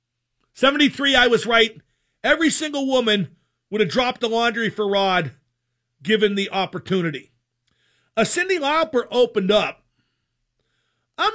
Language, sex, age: English, male, 50-69